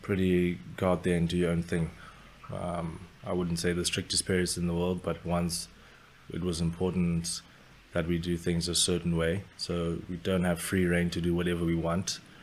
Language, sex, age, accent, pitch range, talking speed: English, male, 20-39, South African, 85-90 Hz, 205 wpm